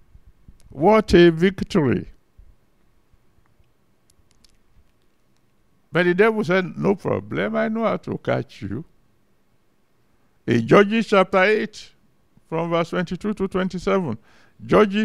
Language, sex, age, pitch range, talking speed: English, male, 60-79, 150-210 Hz, 100 wpm